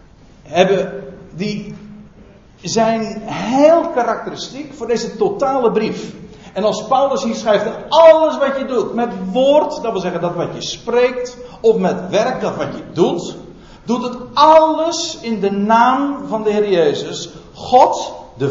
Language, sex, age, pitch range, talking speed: Dutch, male, 50-69, 190-250 Hz, 145 wpm